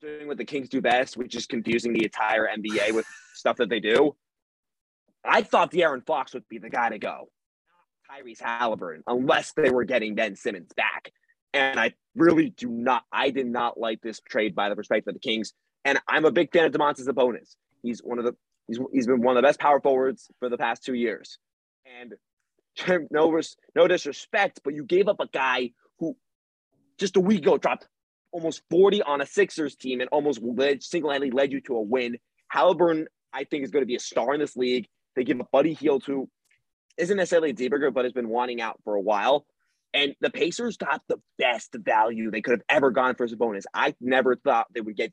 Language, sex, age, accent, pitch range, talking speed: English, male, 30-49, American, 115-155 Hz, 220 wpm